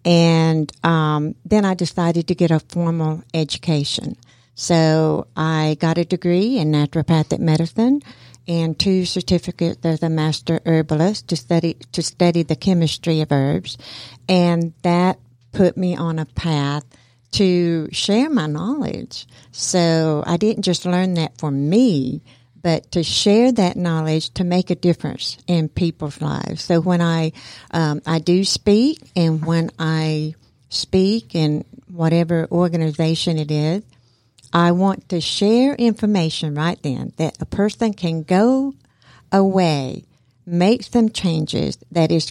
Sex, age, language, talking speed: female, 60-79, English, 140 wpm